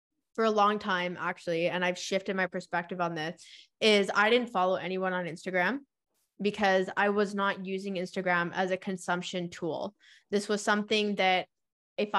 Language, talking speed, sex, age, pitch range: English, 165 wpm, female, 20-39, 180-210 Hz